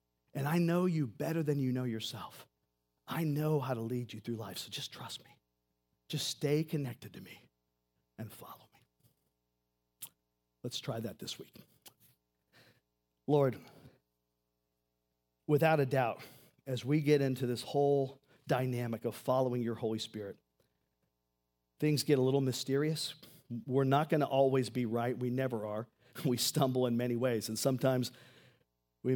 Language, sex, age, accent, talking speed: English, male, 40-59, American, 150 wpm